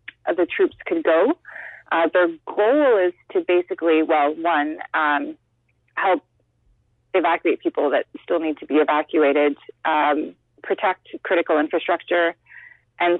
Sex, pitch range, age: female, 160-195 Hz, 30-49